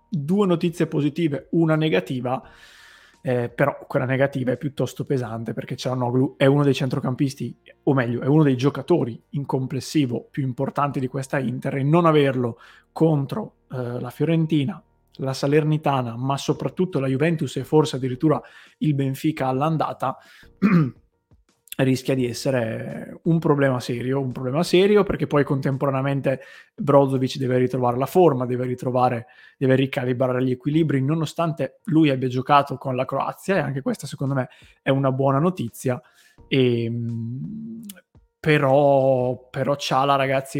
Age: 20-39